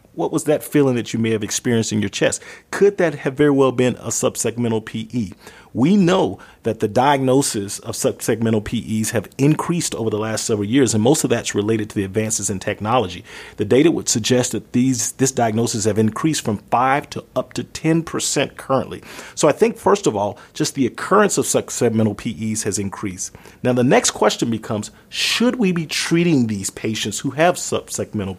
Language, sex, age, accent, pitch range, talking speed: English, male, 40-59, American, 110-135 Hz, 190 wpm